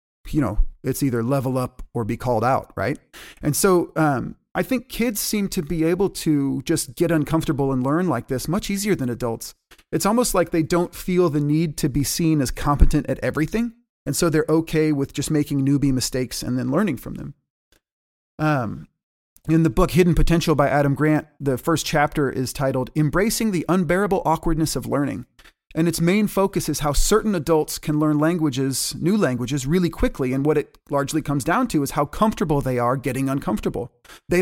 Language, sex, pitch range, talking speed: English, male, 140-170 Hz, 195 wpm